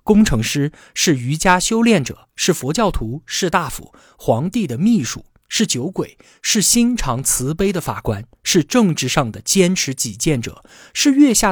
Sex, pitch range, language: male, 125-195 Hz, Chinese